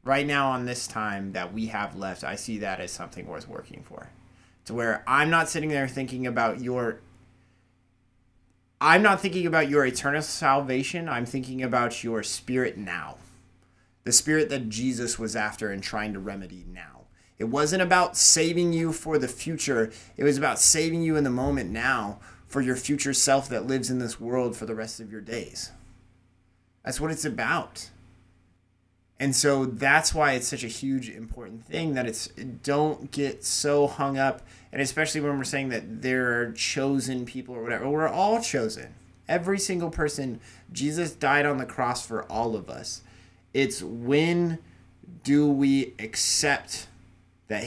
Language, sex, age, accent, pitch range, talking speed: English, male, 30-49, American, 105-145 Hz, 170 wpm